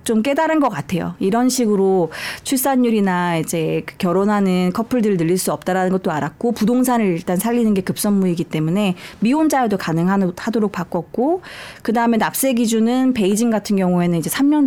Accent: native